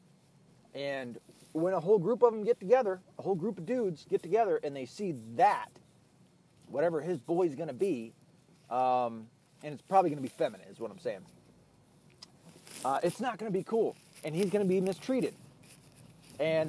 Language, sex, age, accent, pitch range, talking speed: English, male, 30-49, American, 150-210 Hz, 185 wpm